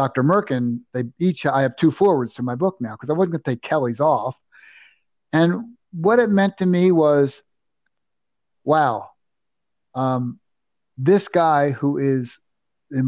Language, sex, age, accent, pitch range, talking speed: English, male, 50-69, American, 140-185 Hz, 155 wpm